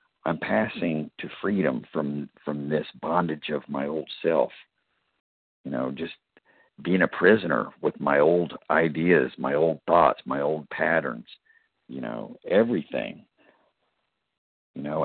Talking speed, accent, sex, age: 130 wpm, American, male, 50-69